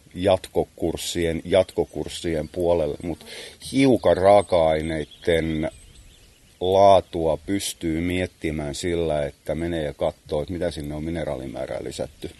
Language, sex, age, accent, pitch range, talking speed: Finnish, male, 30-49, native, 80-90 Hz, 95 wpm